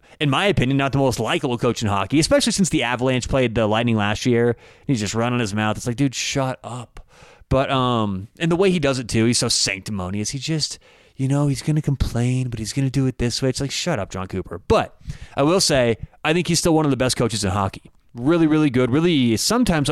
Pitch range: 120-160 Hz